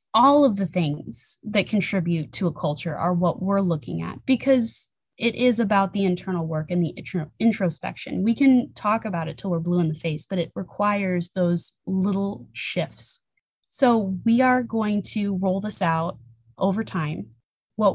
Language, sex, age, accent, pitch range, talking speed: English, female, 20-39, American, 175-220 Hz, 175 wpm